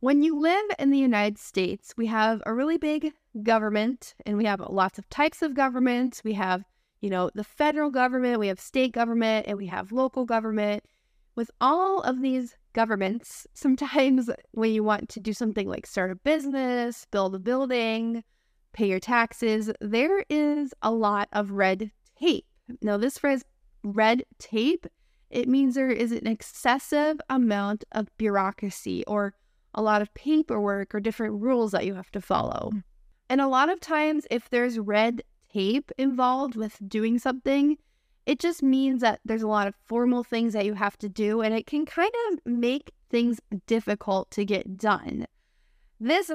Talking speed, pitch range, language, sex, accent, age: 170 wpm, 210-265 Hz, English, female, American, 20-39